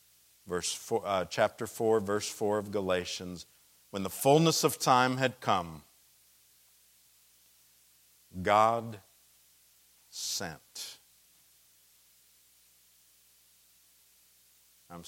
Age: 50-69